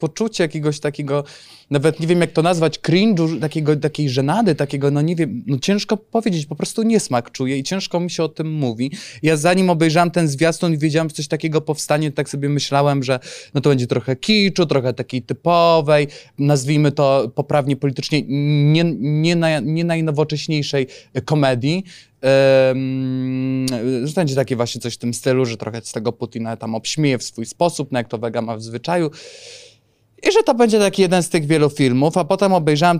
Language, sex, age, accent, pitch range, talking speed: Polish, male, 20-39, native, 130-170 Hz, 185 wpm